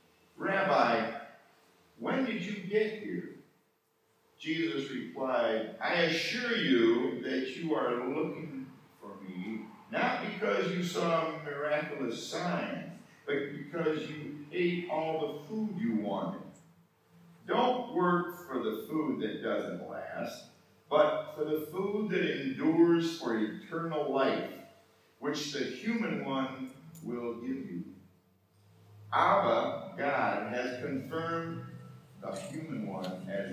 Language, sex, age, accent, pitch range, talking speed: English, male, 50-69, American, 130-180 Hz, 115 wpm